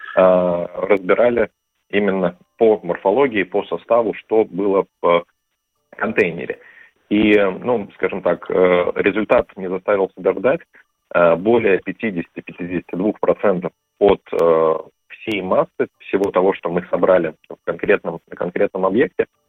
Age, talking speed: 40-59, 100 wpm